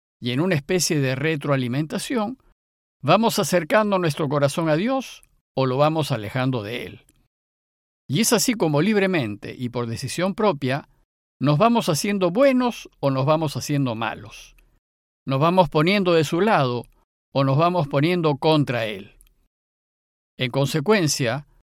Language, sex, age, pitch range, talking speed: Spanish, male, 50-69, 130-185 Hz, 140 wpm